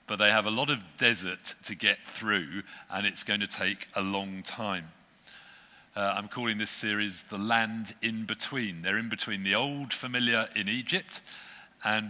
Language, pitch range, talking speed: English, 100-120 Hz, 180 wpm